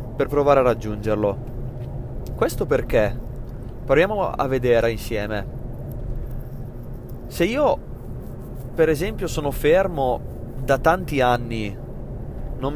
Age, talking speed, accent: 20-39, 95 wpm, native